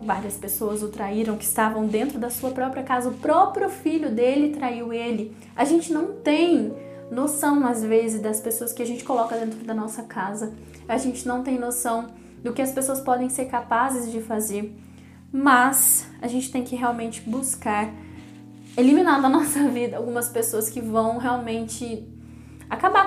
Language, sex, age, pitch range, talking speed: Portuguese, female, 10-29, 225-270 Hz, 170 wpm